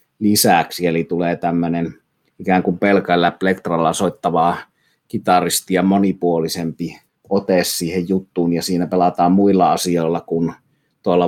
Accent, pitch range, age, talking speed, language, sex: native, 85-100 Hz, 30-49, 115 wpm, Finnish, male